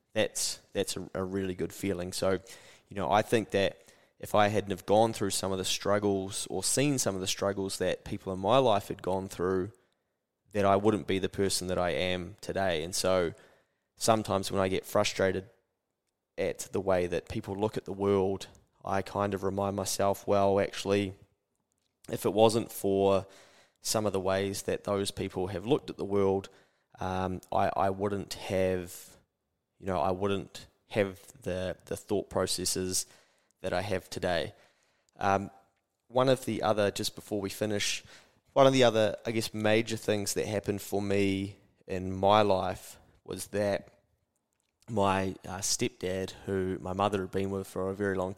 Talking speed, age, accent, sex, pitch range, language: 175 wpm, 20-39, Australian, male, 95-105 Hz, English